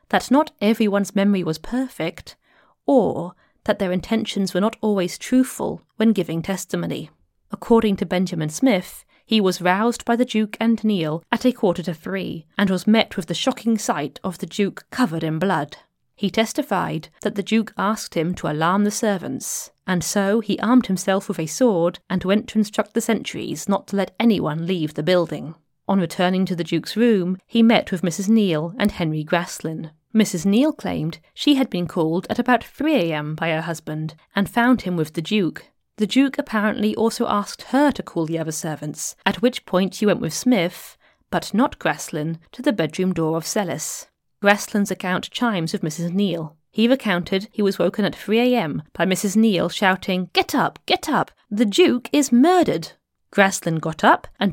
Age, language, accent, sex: 30-49, English, British, female